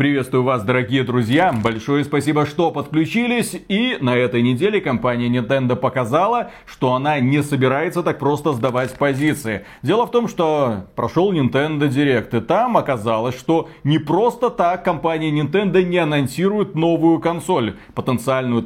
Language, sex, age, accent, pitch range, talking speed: Russian, male, 30-49, native, 130-195 Hz, 140 wpm